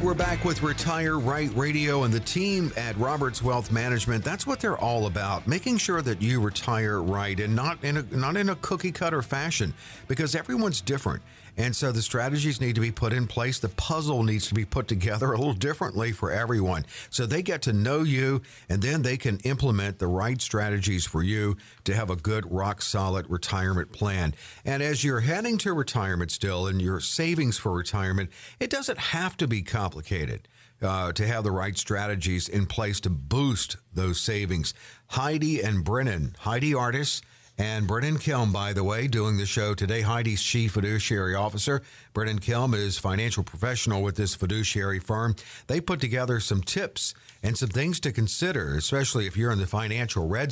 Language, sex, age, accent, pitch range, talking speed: English, male, 50-69, American, 100-135 Hz, 190 wpm